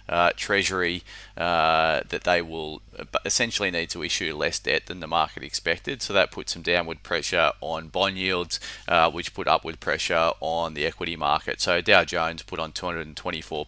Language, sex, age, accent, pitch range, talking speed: English, male, 30-49, Australian, 85-90 Hz, 175 wpm